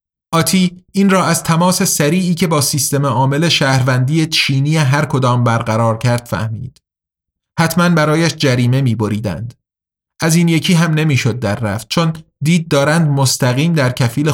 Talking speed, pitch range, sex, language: 140 wpm, 120-165 Hz, male, Persian